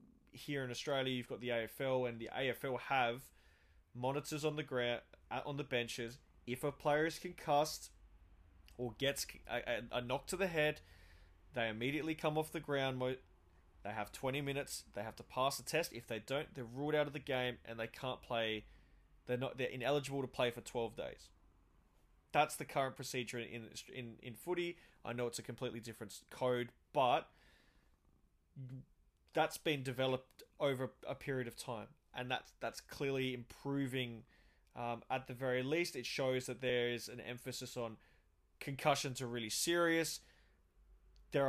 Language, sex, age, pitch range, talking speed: English, male, 20-39, 110-135 Hz, 170 wpm